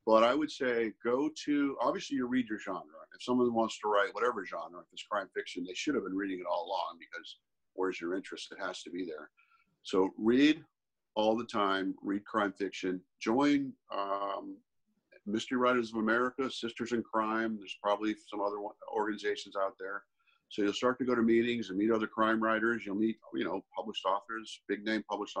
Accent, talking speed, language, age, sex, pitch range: American, 200 wpm, English, 50-69, male, 95-120 Hz